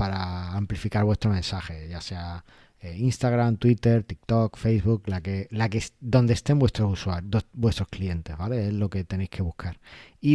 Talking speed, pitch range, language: 145 wpm, 100-125 Hz, Spanish